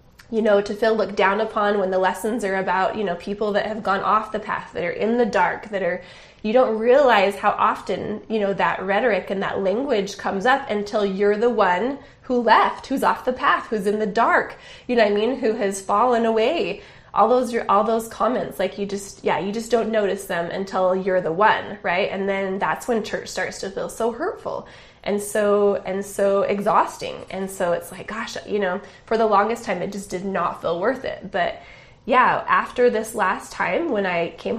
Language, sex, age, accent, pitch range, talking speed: English, female, 20-39, American, 195-230 Hz, 220 wpm